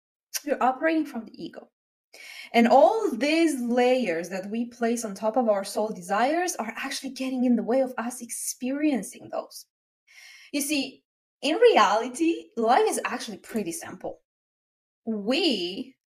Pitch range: 215-285 Hz